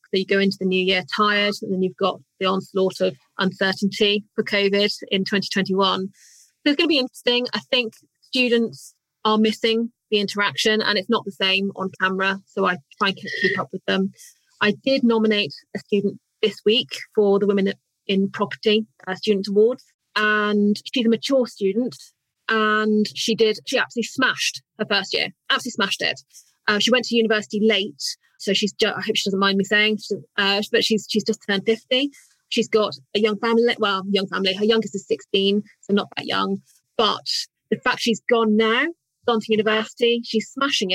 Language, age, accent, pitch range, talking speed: English, 30-49, British, 195-230 Hz, 190 wpm